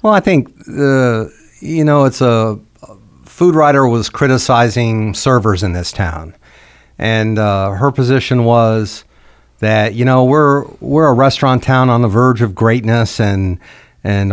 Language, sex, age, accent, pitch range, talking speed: English, male, 60-79, American, 95-125 Hz, 155 wpm